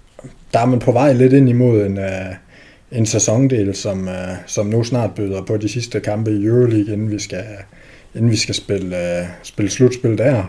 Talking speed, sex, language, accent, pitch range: 185 wpm, male, Danish, native, 105-135 Hz